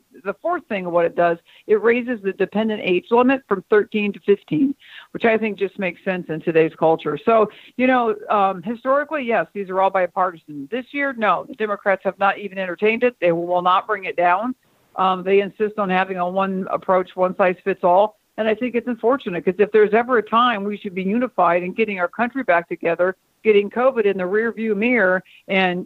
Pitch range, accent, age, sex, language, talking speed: 180-215 Hz, American, 60-79, female, English, 215 wpm